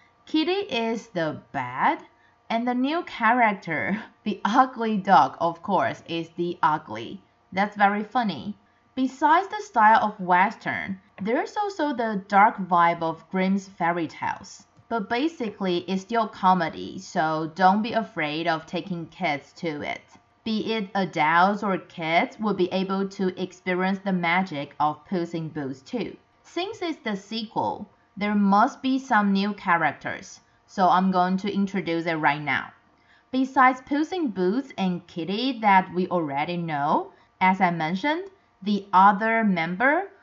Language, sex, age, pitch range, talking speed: English, female, 30-49, 175-230 Hz, 145 wpm